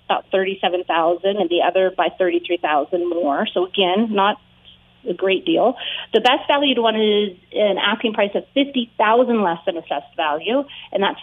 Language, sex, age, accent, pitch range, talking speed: English, female, 30-49, American, 185-235 Hz, 175 wpm